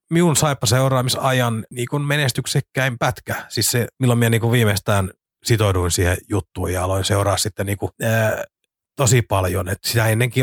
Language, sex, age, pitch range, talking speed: Finnish, male, 30-49, 100-125 Hz, 155 wpm